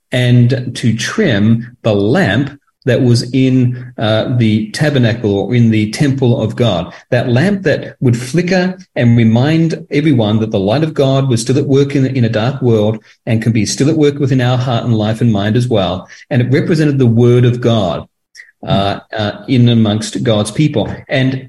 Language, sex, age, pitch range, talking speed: English, male, 40-59, 110-145 Hz, 190 wpm